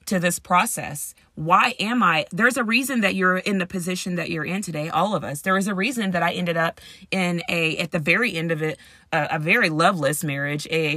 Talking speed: 235 wpm